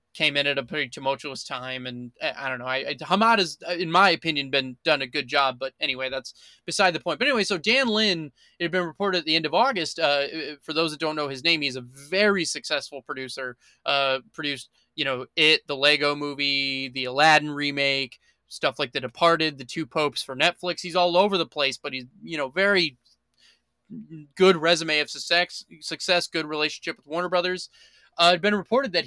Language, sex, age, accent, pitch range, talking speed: English, male, 20-39, American, 140-180 Hz, 210 wpm